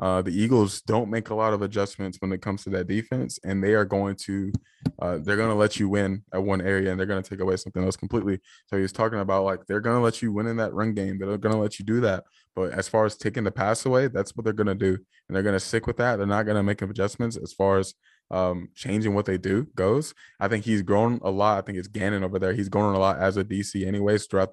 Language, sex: English, male